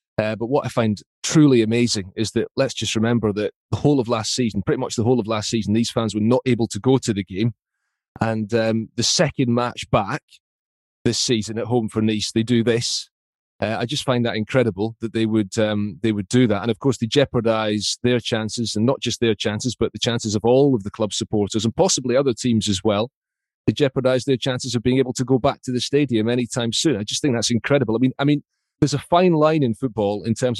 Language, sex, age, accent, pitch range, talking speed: English, male, 30-49, British, 105-125 Hz, 240 wpm